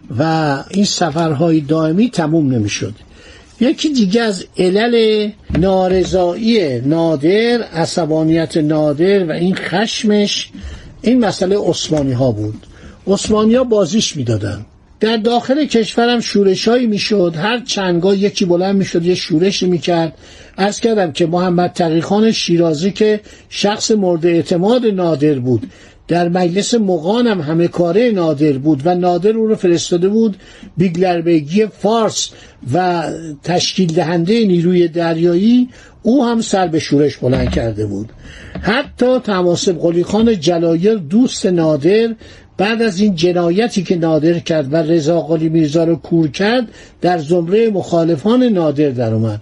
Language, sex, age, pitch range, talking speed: Persian, male, 60-79, 165-215 Hz, 130 wpm